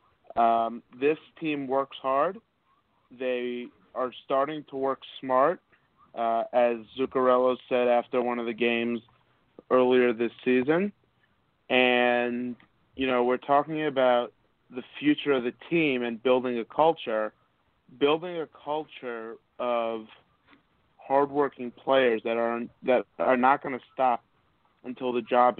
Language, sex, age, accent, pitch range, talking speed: English, male, 30-49, American, 115-135 Hz, 130 wpm